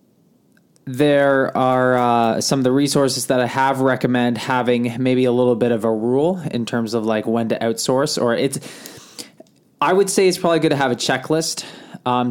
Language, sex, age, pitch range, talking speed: English, male, 20-39, 110-130 Hz, 190 wpm